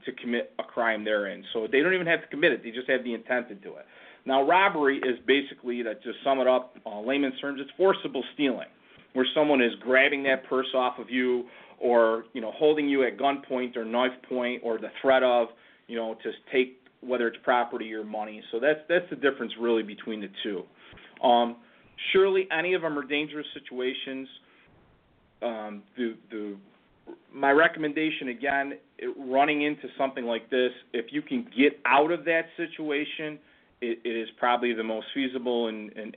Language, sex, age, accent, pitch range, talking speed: English, male, 40-59, American, 115-145 Hz, 185 wpm